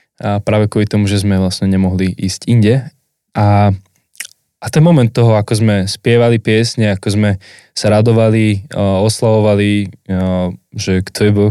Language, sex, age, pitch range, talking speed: Slovak, male, 10-29, 100-115 Hz, 155 wpm